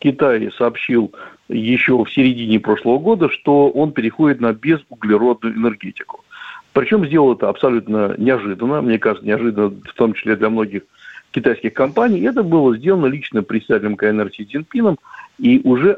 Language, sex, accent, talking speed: Russian, male, native, 140 wpm